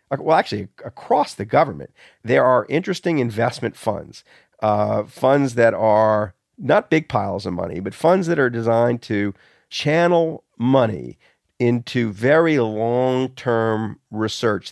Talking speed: 125 wpm